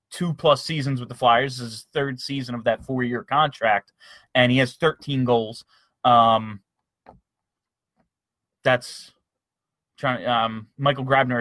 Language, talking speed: English, 140 wpm